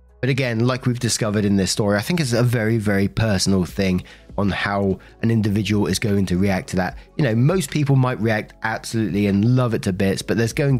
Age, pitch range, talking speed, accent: 20-39, 90-115 Hz, 230 wpm, British